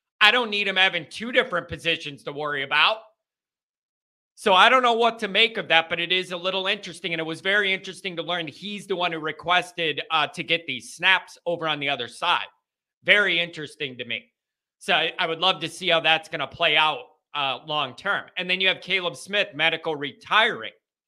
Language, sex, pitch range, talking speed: English, male, 165-200 Hz, 210 wpm